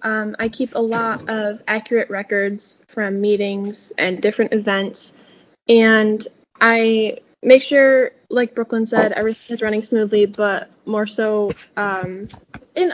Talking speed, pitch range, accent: 135 wpm, 205-230 Hz, American